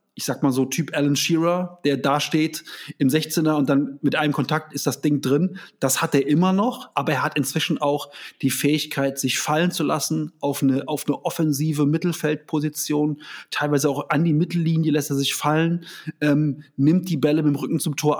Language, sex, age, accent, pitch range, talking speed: German, male, 30-49, German, 140-155 Hz, 200 wpm